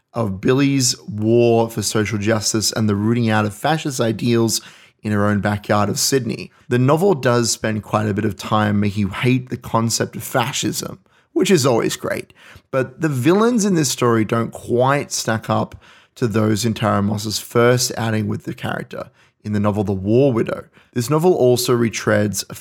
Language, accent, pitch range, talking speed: English, Australian, 110-125 Hz, 185 wpm